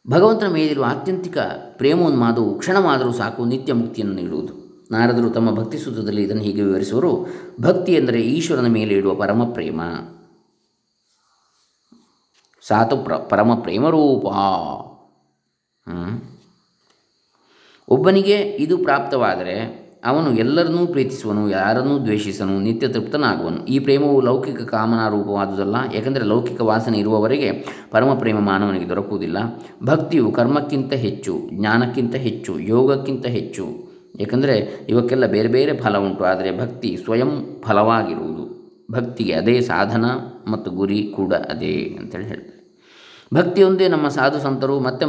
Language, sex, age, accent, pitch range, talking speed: Kannada, male, 20-39, native, 105-135 Hz, 105 wpm